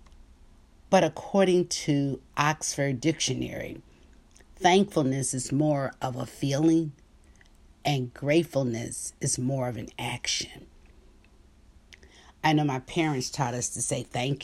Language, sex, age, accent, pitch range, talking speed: English, female, 50-69, American, 120-155 Hz, 110 wpm